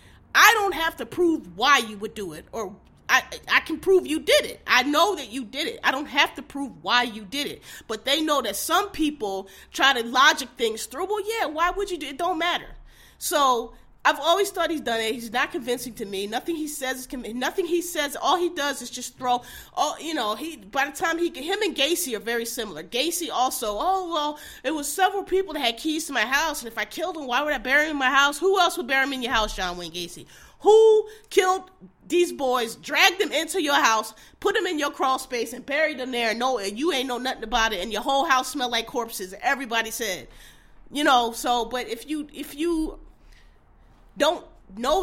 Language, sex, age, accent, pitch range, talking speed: English, female, 30-49, American, 240-330 Hz, 235 wpm